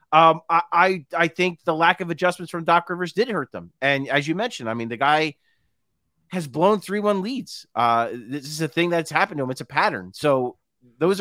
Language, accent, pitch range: English, American, 145-190 Hz